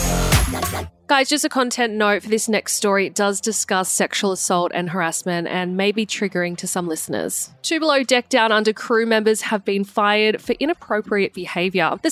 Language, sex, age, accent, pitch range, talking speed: English, female, 20-39, Australian, 190-255 Hz, 185 wpm